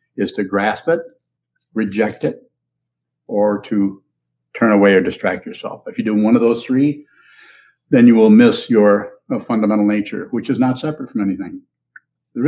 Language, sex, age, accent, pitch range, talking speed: English, male, 60-79, American, 100-135 Hz, 170 wpm